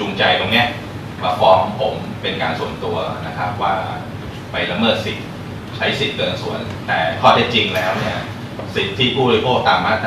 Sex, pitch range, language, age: male, 95-115 Hz, Thai, 20-39